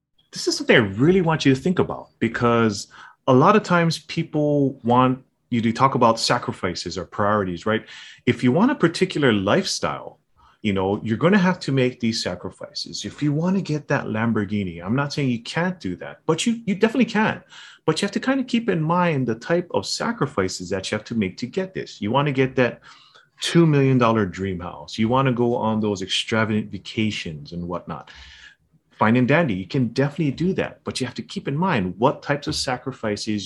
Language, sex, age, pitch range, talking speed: English, male, 30-49, 105-150 Hz, 215 wpm